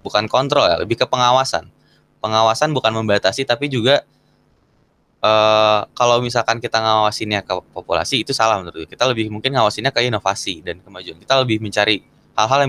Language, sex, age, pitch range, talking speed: Indonesian, male, 20-39, 100-120 Hz, 165 wpm